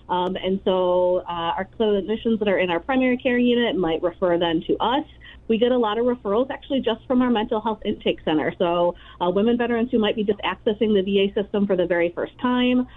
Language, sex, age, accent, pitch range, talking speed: English, female, 30-49, American, 180-245 Hz, 225 wpm